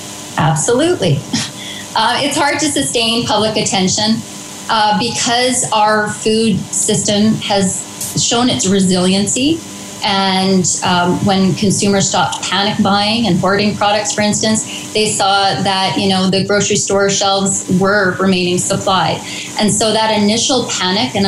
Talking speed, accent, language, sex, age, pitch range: 135 wpm, American, English, female, 30-49, 185-215 Hz